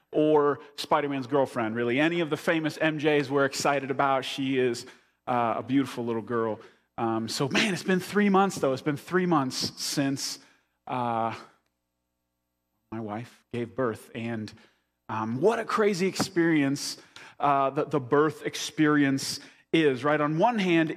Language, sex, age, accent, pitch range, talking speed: English, male, 30-49, American, 120-165 Hz, 150 wpm